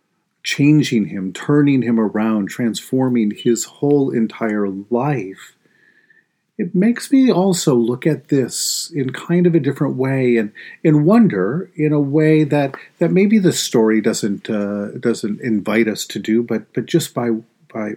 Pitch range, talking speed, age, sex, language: 115-160 Hz, 155 wpm, 40-59, male, English